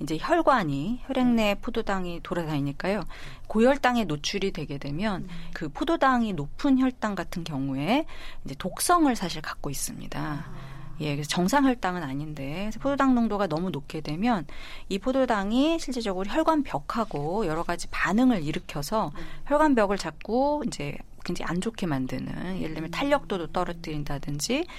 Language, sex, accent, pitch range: Korean, female, native, 155-225 Hz